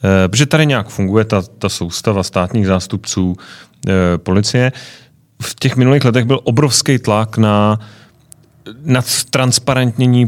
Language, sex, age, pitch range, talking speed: Czech, male, 30-49, 95-125 Hz, 125 wpm